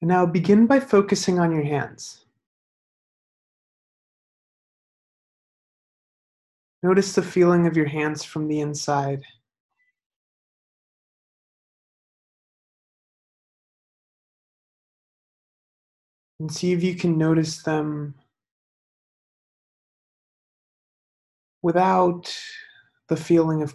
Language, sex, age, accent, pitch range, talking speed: English, male, 40-59, American, 150-180 Hz, 70 wpm